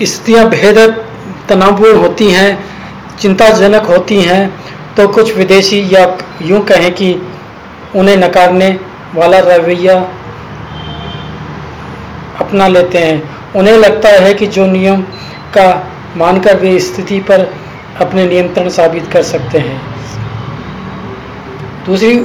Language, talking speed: Hindi, 110 wpm